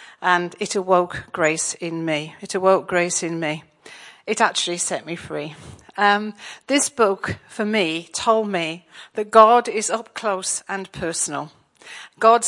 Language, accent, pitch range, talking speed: English, British, 175-210 Hz, 150 wpm